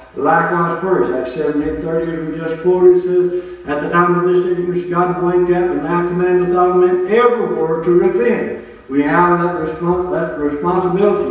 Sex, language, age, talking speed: male, English, 60-79, 190 wpm